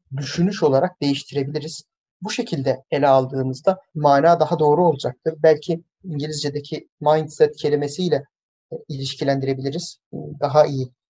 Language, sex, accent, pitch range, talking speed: Turkish, male, native, 145-180 Hz, 95 wpm